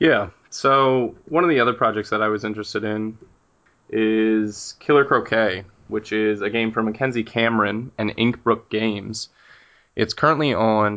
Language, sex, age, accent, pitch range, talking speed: English, male, 20-39, American, 105-115 Hz, 155 wpm